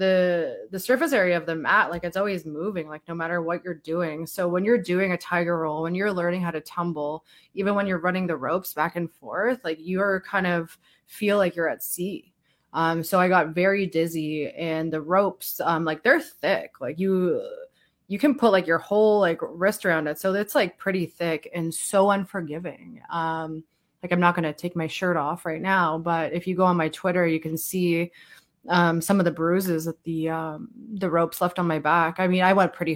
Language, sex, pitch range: English, female, 165-190 Hz